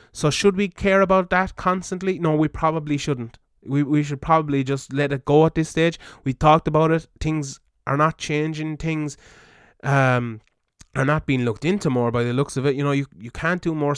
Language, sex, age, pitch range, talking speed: English, male, 20-39, 130-155 Hz, 215 wpm